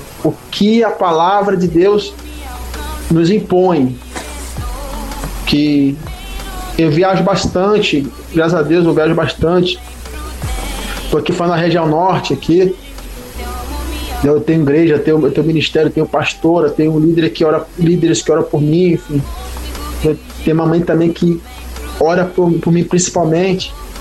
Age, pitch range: 20-39, 155-205 Hz